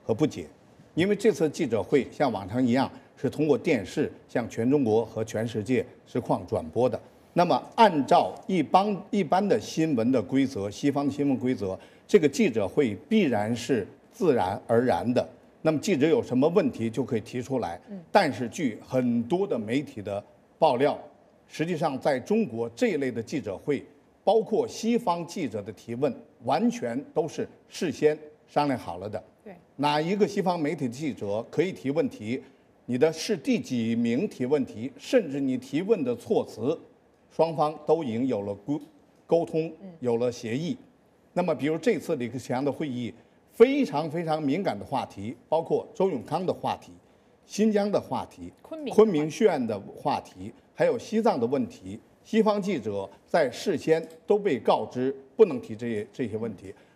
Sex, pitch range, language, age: male, 130-215 Hz, English, 50-69